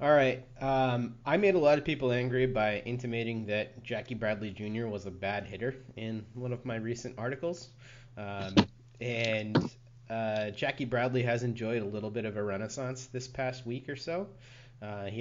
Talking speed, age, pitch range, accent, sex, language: 180 wpm, 30-49, 105-125 Hz, American, male, English